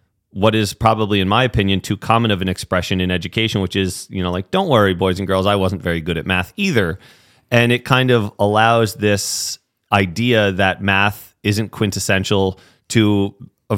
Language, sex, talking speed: English, male, 185 wpm